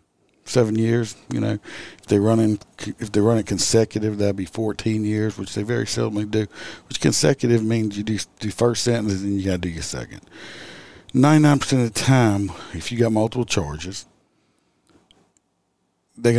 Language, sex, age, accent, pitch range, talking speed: English, male, 50-69, American, 100-120 Hz, 175 wpm